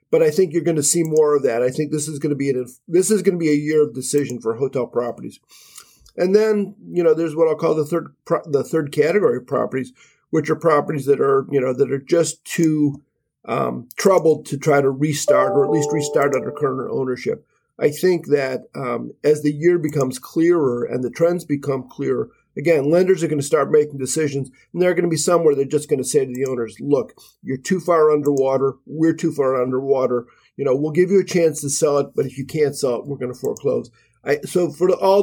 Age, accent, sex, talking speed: 40-59, American, male, 235 wpm